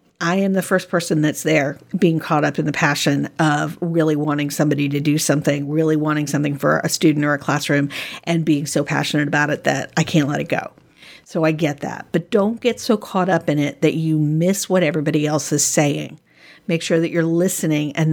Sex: female